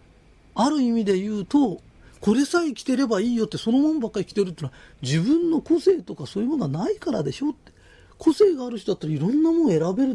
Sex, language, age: male, Japanese, 40-59